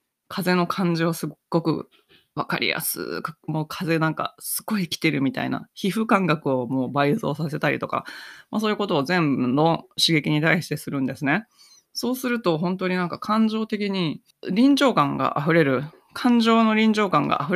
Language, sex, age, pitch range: Japanese, female, 20-39, 145-205 Hz